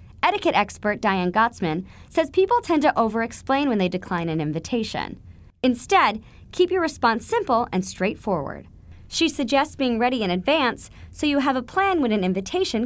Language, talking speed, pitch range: English, 165 wpm, 180-300 Hz